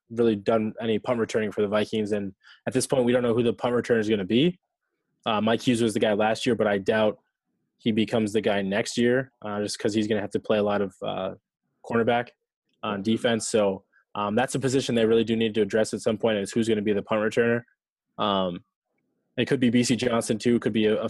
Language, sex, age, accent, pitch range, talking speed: English, male, 20-39, American, 110-120 Hz, 255 wpm